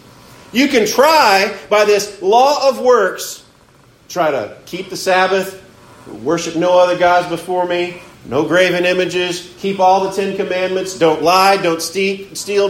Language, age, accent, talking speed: English, 40-59, American, 145 wpm